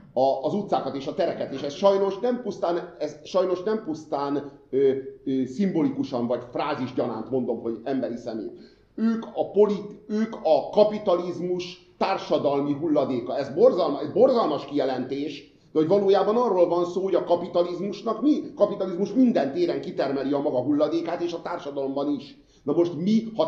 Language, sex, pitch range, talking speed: Hungarian, male, 140-195 Hz, 160 wpm